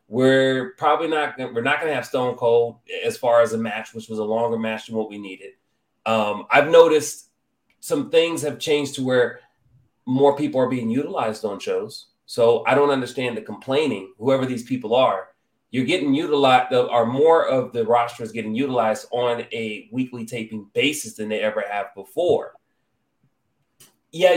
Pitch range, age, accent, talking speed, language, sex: 115-165 Hz, 30-49, American, 175 wpm, English, male